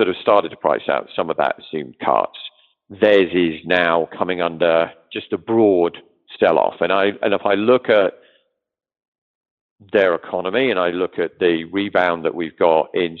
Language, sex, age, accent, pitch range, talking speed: English, male, 50-69, British, 85-115 Hz, 180 wpm